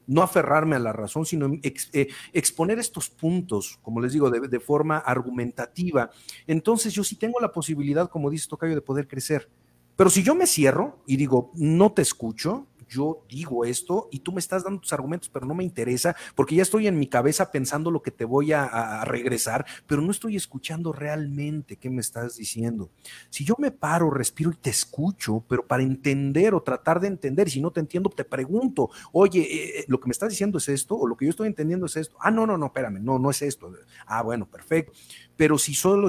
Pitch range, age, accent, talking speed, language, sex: 125-175 Hz, 40-59, Mexican, 215 wpm, Spanish, male